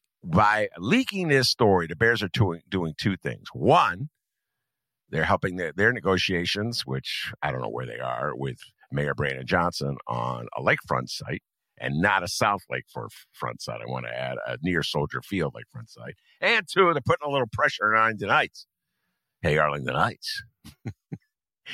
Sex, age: male, 50-69